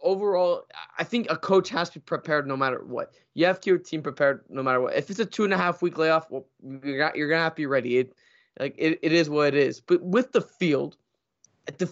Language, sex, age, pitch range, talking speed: English, male, 20-39, 145-190 Hz, 245 wpm